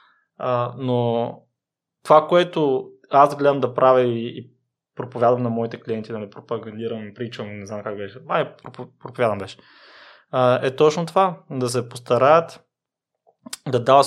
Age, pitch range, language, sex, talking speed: 20-39, 120-150 Hz, Bulgarian, male, 145 wpm